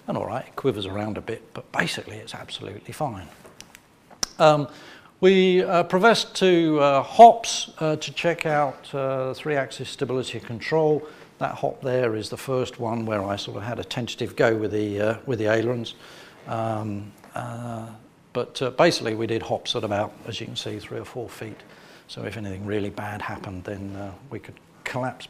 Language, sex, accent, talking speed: English, male, British, 185 wpm